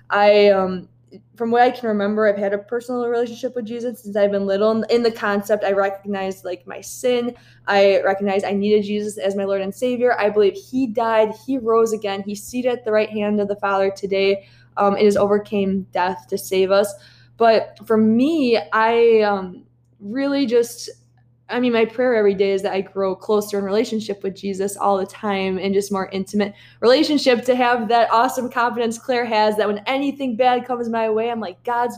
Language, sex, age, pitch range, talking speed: English, female, 20-39, 195-230 Hz, 205 wpm